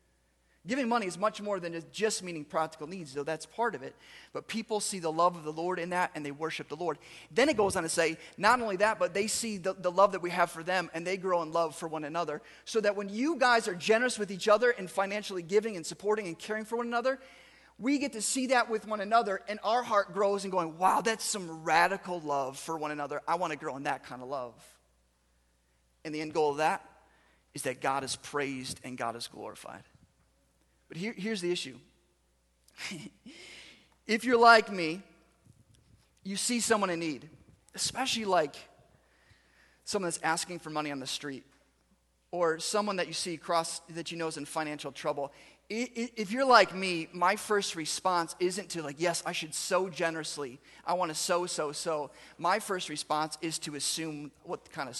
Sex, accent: male, American